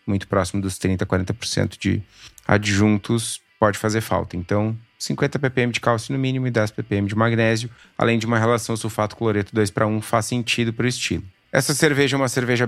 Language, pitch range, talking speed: Portuguese, 100-120 Hz, 190 wpm